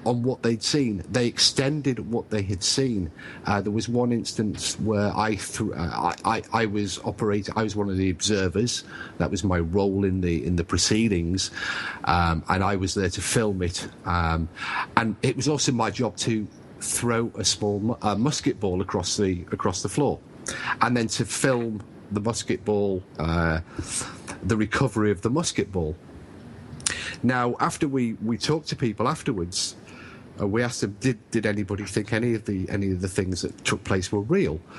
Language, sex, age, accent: English, male, 40-59, British